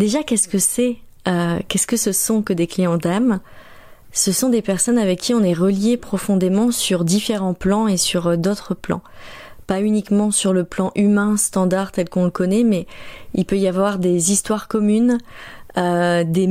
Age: 30-49